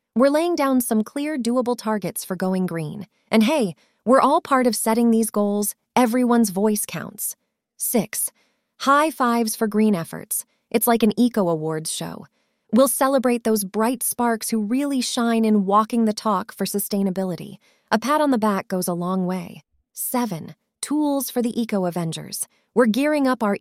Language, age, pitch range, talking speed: English, 20-39, 200-255 Hz, 170 wpm